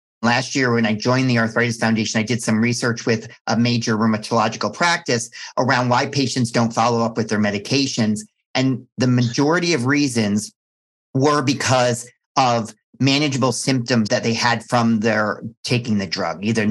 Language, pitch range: English, 110-125 Hz